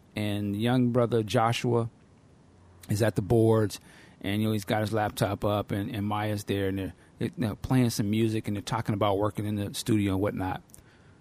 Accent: American